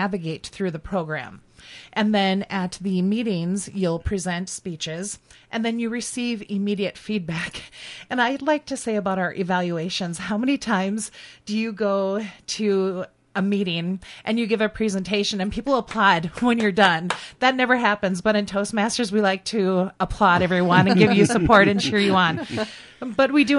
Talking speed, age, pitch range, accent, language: 175 wpm, 30-49, 185-225 Hz, American, English